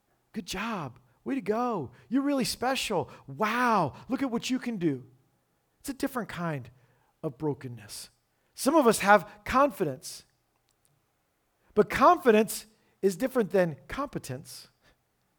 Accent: American